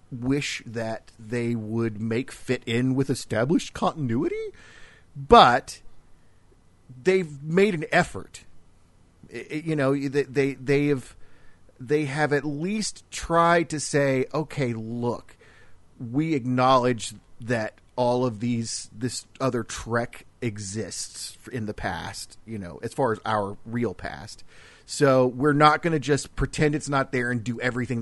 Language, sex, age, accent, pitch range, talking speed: English, male, 40-59, American, 105-150 Hz, 140 wpm